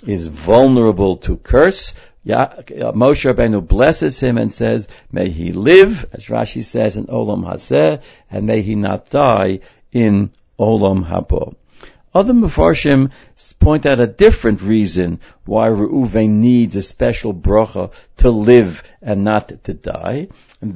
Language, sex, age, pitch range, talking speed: English, male, 60-79, 95-120 Hz, 135 wpm